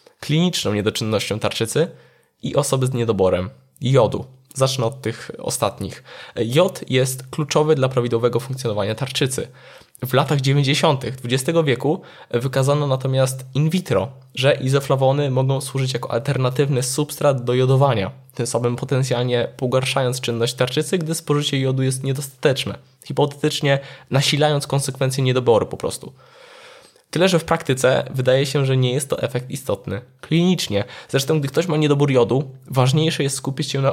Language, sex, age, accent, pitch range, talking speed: Polish, male, 20-39, native, 125-145 Hz, 140 wpm